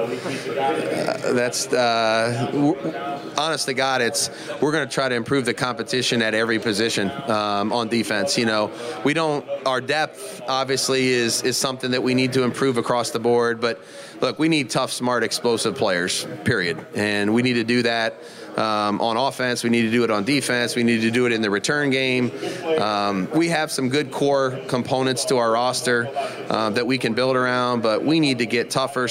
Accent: American